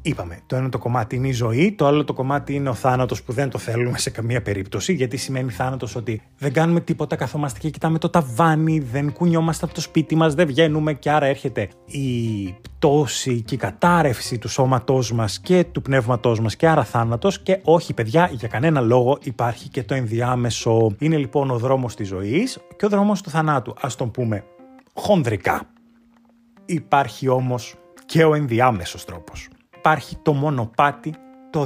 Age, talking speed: 30-49, 175 wpm